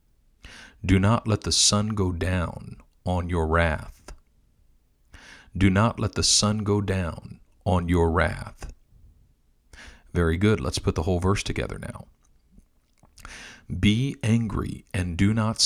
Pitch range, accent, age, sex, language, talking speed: 85-105 Hz, American, 50-69, male, English, 130 wpm